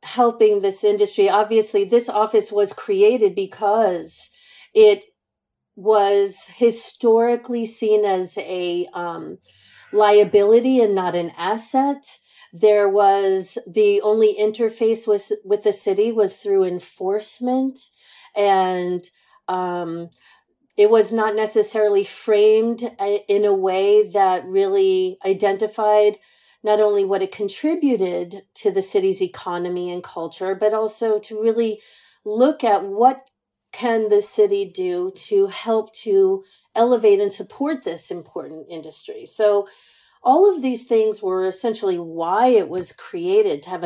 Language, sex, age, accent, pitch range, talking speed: English, female, 40-59, American, 195-255 Hz, 125 wpm